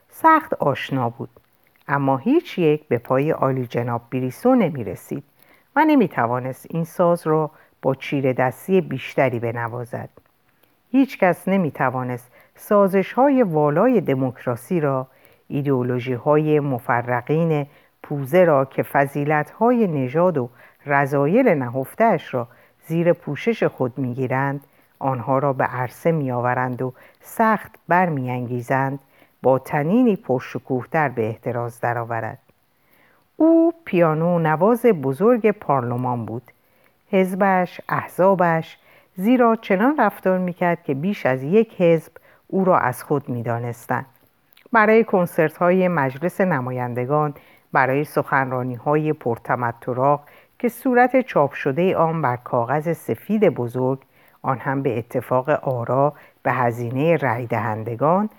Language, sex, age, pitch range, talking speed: Persian, female, 50-69, 125-180 Hz, 115 wpm